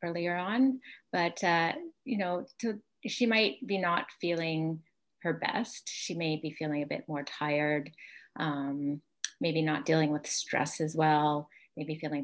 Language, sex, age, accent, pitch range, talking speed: English, female, 30-49, American, 155-180 Hz, 150 wpm